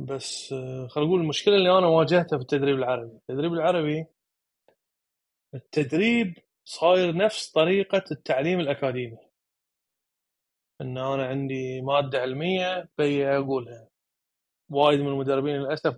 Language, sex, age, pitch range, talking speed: Arabic, male, 20-39, 135-185 Hz, 110 wpm